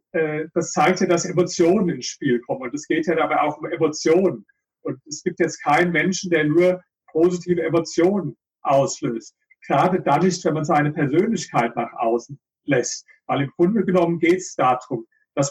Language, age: German, 40-59